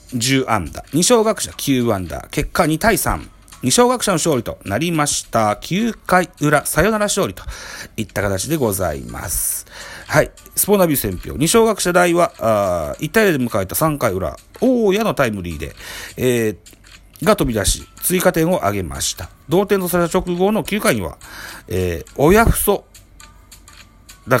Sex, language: male, Japanese